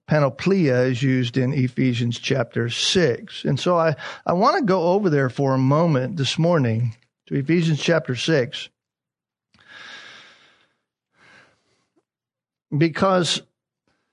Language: English